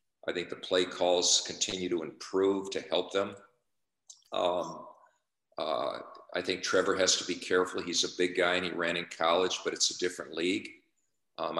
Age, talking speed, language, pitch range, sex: 50-69, 180 wpm, English, 85-90 Hz, male